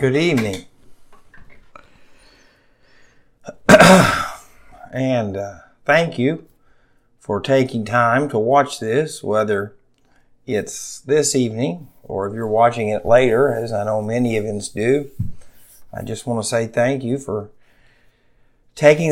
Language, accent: English, American